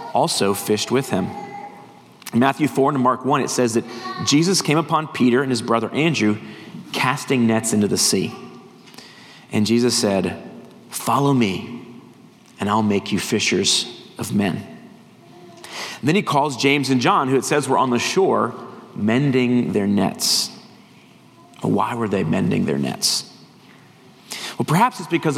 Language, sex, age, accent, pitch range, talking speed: English, male, 40-59, American, 120-160 Hz, 155 wpm